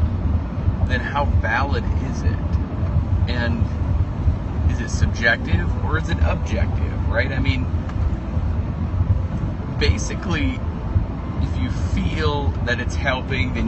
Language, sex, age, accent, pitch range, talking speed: English, male, 30-49, American, 85-95 Hz, 105 wpm